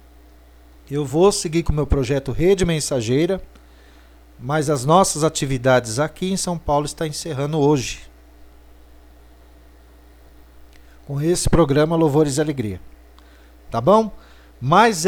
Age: 50-69